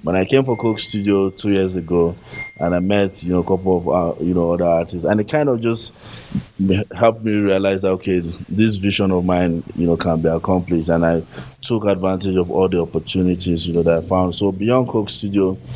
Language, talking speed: English, 220 wpm